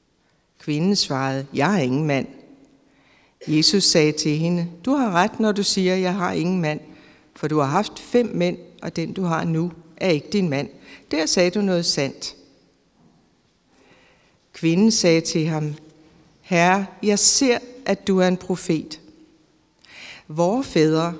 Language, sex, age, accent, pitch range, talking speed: Danish, female, 60-79, native, 155-195 Hz, 155 wpm